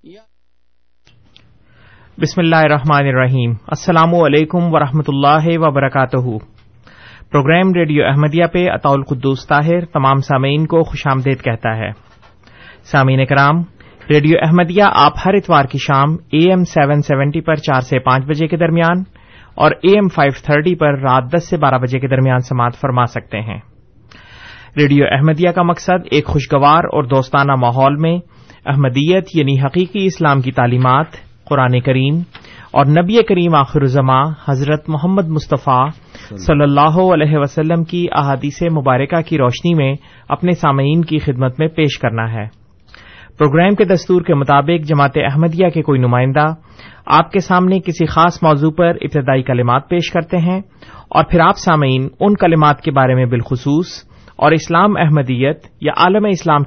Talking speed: 145 wpm